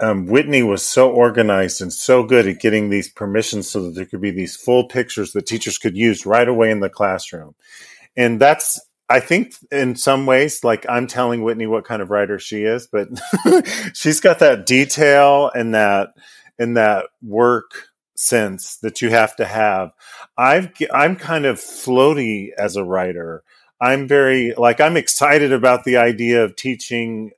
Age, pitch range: 40-59, 105-125 Hz